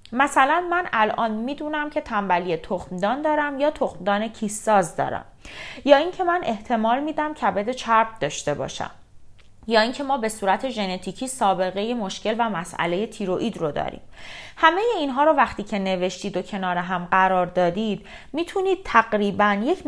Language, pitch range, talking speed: Persian, 185-255 Hz, 155 wpm